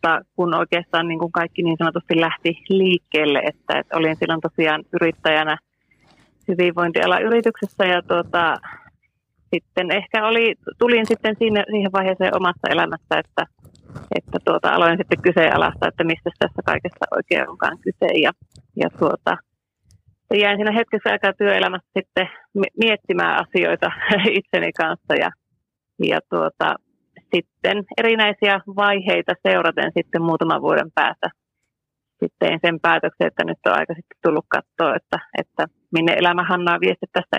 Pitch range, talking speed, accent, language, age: 165-205 Hz, 130 wpm, native, Finnish, 30-49